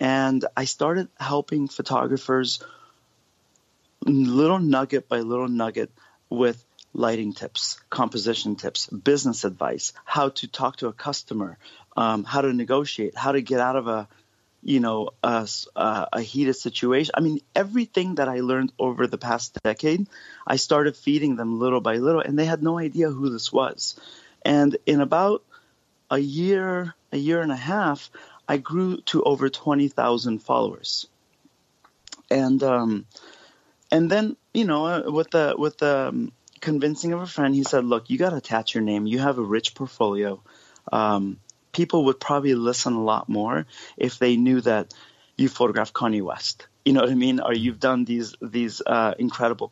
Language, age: English, 30-49